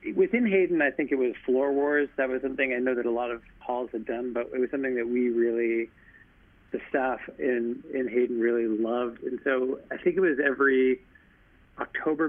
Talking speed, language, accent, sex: 205 wpm, English, American, male